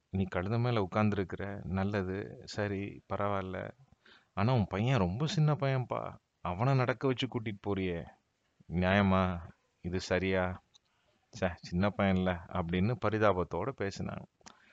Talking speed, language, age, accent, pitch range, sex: 110 wpm, Tamil, 30-49, native, 90-115 Hz, male